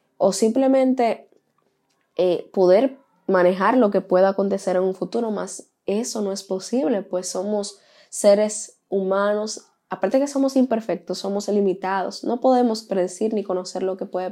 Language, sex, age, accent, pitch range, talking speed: Spanish, female, 10-29, American, 190-215 Hz, 145 wpm